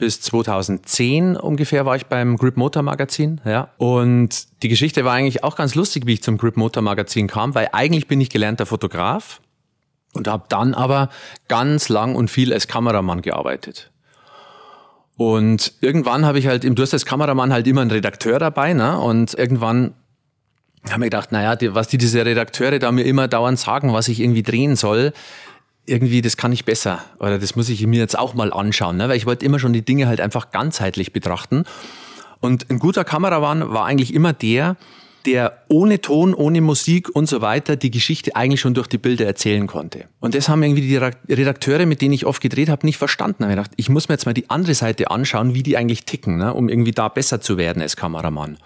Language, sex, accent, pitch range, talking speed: German, male, German, 115-140 Hz, 200 wpm